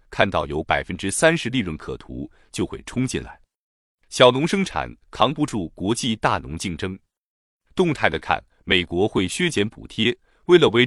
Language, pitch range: Chinese, 95-130 Hz